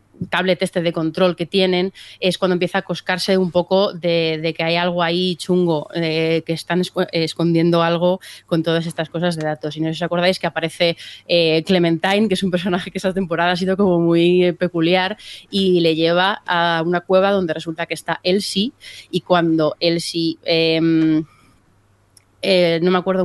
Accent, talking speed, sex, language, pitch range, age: Spanish, 185 wpm, female, Spanish, 160-185 Hz, 20-39